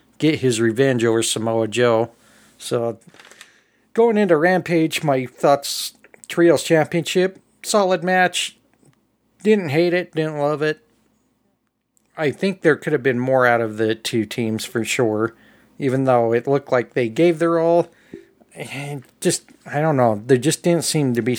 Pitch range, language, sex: 115-155 Hz, English, male